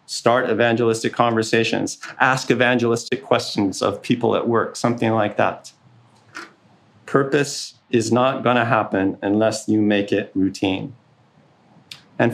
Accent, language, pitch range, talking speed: American, English, 105-140 Hz, 120 wpm